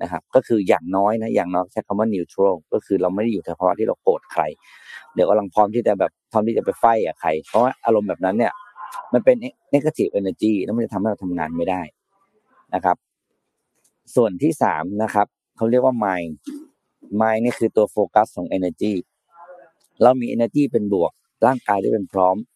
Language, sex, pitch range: Thai, male, 95-120 Hz